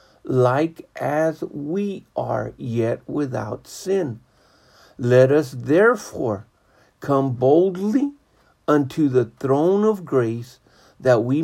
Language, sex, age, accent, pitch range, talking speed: English, male, 50-69, American, 120-160 Hz, 100 wpm